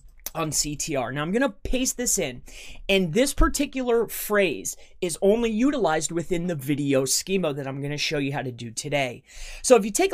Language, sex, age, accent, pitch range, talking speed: English, male, 30-49, American, 160-225 Hz, 190 wpm